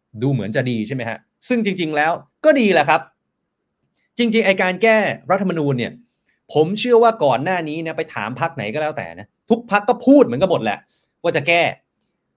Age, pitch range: 30-49, 140-205 Hz